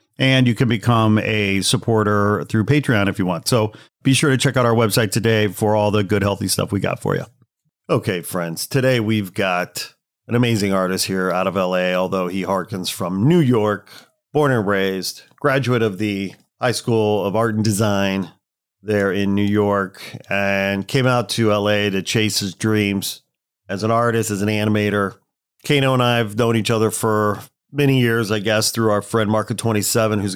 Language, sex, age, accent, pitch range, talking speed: English, male, 40-59, American, 100-115 Hz, 190 wpm